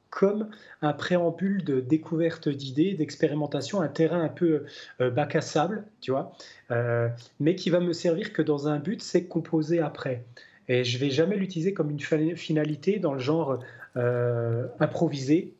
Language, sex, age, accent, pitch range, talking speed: French, male, 30-49, French, 130-165 Hz, 165 wpm